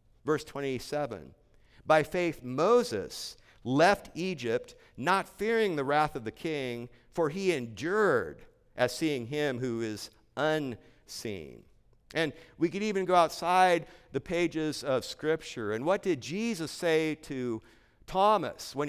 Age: 50-69